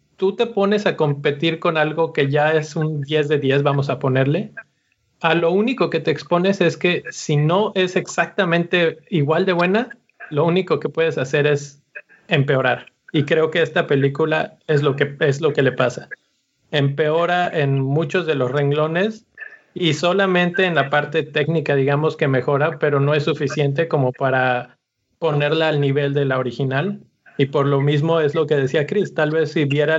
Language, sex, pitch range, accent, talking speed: Spanish, male, 140-165 Hz, Mexican, 185 wpm